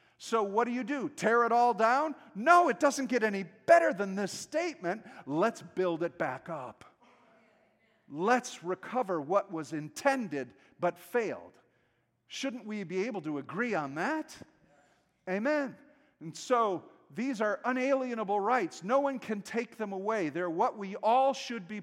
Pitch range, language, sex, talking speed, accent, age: 180-255 Hz, English, male, 155 wpm, American, 50-69